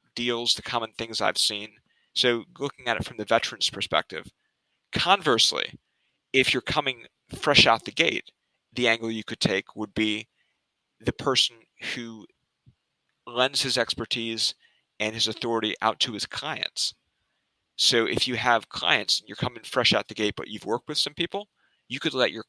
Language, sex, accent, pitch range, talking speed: English, male, American, 110-135 Hz, 170 wpm